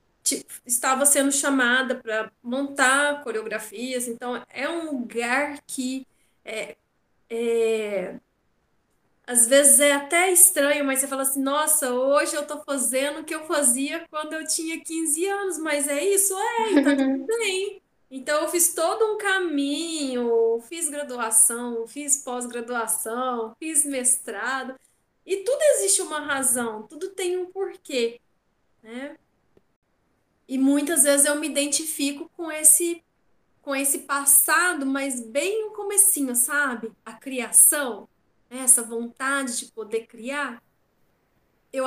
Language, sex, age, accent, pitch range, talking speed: Portuguese, female, 10-29, Brazilian, 235-295 Hz, 130 wpm